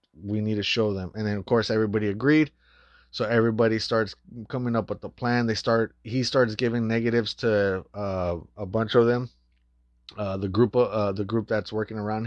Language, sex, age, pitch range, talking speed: English, male, 30-49, 100-115 Hz, 195 wpm